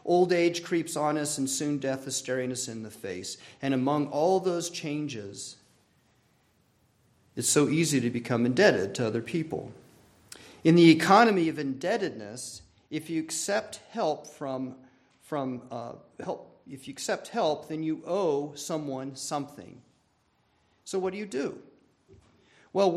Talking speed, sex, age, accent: 145 wpm, male, 40-59, American